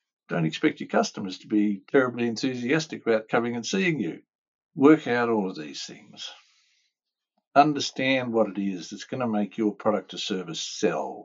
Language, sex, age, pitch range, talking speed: English, male, 60-79, 105-140 Hz, 170 wpm